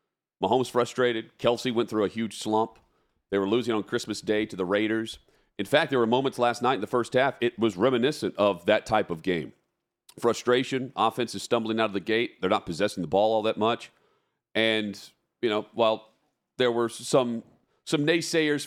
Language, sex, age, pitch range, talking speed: English, male, 40-59, 105-130 Hz, 195 wpm